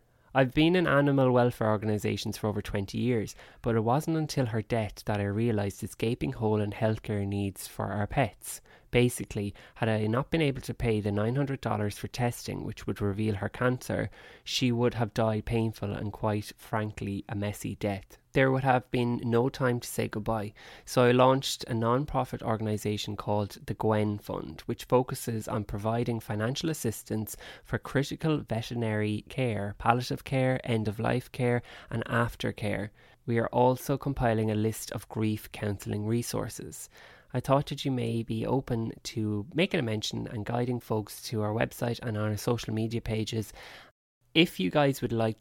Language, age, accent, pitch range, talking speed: English, 20-39, Irish, 105-125 Hz, 170 wpm